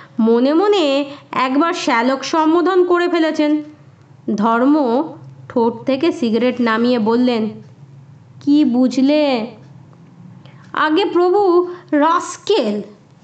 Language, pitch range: Bengali, 225-320 Hz